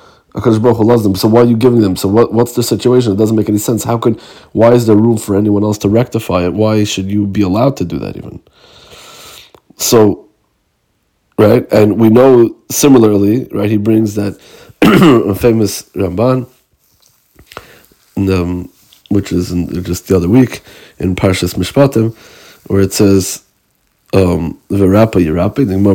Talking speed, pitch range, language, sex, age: 165 wpm, 95-115 Hz, Hebrew, male, 30-49